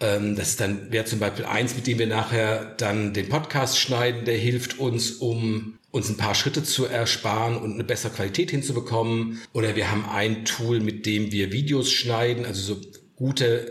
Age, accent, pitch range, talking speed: 50-69, German, 120-150 Hz, 190 wpm